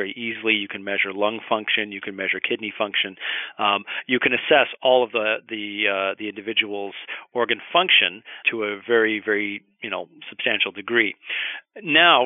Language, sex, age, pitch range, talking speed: English, male, 40-59, 105-120 Hz, 160 wpm